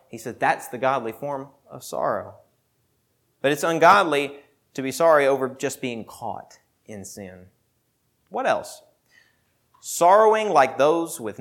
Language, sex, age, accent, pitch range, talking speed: English, male, 30-49, American, 135-185 Hz, 135 wpm